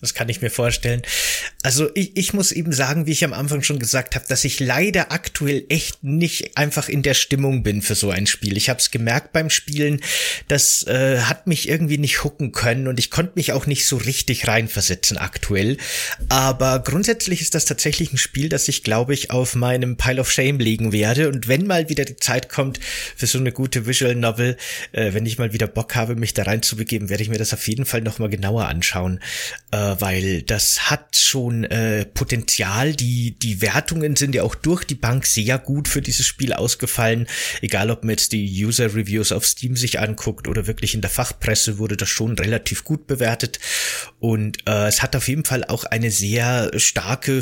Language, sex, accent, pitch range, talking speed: German, male, German, 110-140 Hz, 205 wpm